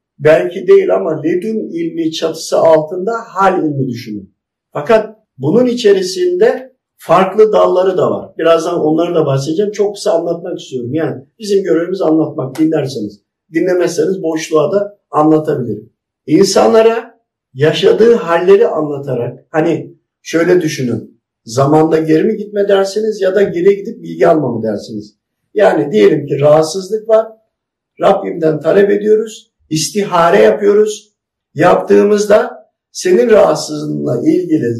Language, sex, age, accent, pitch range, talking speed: Turkish, male, 50-69, native, 150-210 Hz, 115 wpm